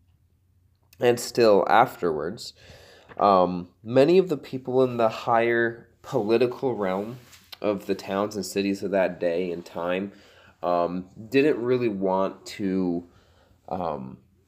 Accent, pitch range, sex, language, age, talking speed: American, 90-110 Hz, male, English, 20-39, 120 wpm